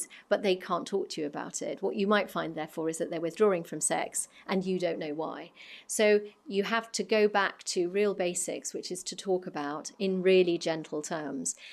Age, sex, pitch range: 40-59, female, 160-200 Hz